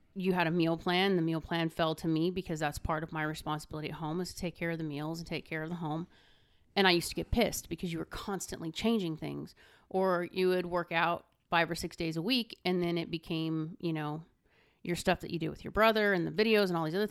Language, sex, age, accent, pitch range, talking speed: English, female, 30-49, American, 160-190 Hz, 265 wpm